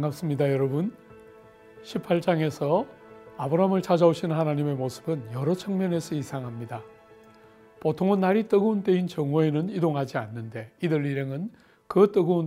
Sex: male